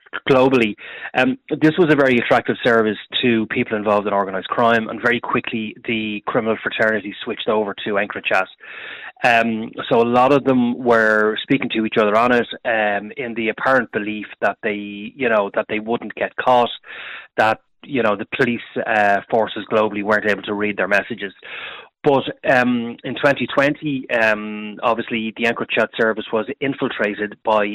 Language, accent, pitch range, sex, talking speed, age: English, Irish, 105-125 Hz, male, 170 wpm, 20-39